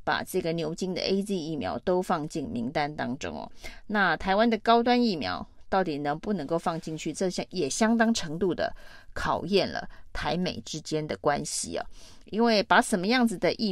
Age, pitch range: 30-49, 160-210 Hz